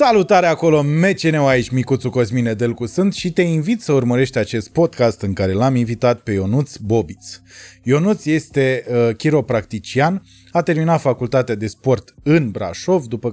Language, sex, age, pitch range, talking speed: Romanian, male, 20-39, 110-145 Hz, 155 wpm